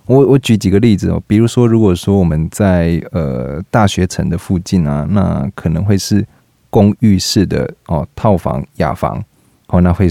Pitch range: 85-100 Hz